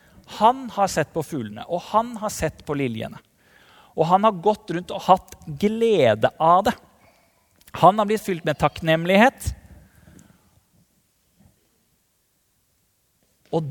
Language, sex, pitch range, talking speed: English, male, 135-200 Hz, 125 wpm